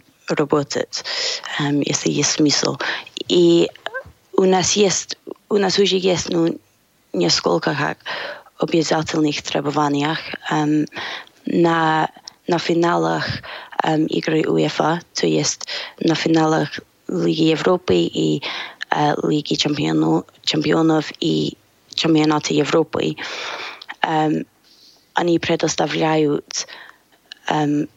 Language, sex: Russian, female